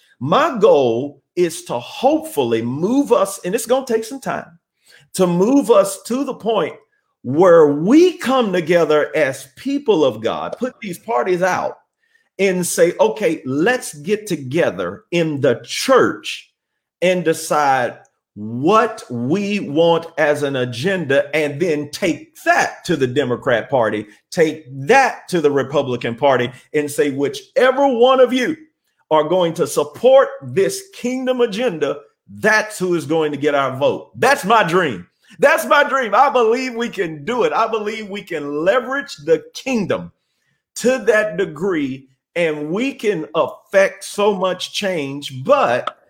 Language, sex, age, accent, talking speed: English, male, 40-59, American, 150 wpm